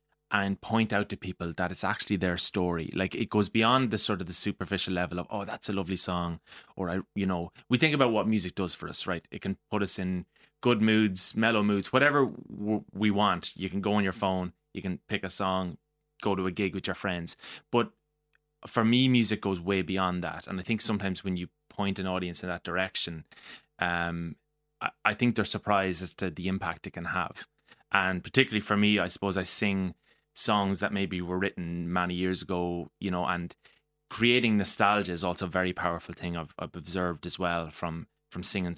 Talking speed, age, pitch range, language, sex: 215 wpm, 20-39, 90-105 Hz, English, male